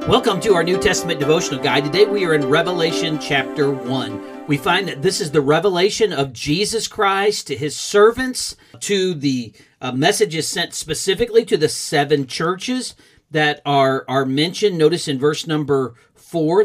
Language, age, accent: English, 40-59, American